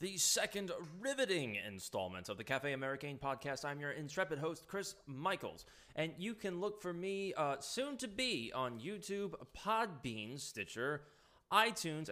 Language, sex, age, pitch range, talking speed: English, male, 20-39, 120-180 Hz, 150 wpm